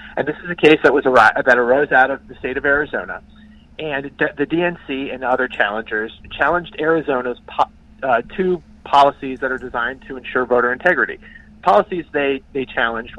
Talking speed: 175 wpm